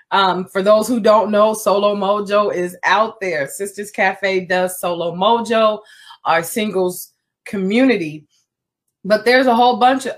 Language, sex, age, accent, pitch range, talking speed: English, female, 20-39, American, 180-235 Hz, 145 wpm